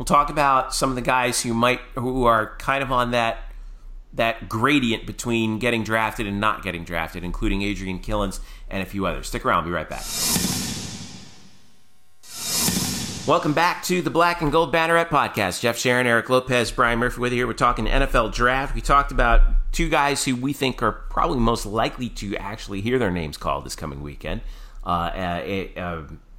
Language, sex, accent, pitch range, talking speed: English, male, American, 105-135 Hz, 185 wpm